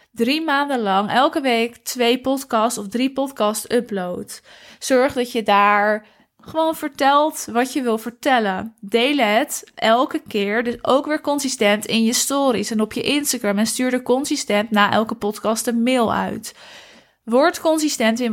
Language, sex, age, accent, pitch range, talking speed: Dutch, female, 20-39, Dutch, 215-255 Hz, 160 wpm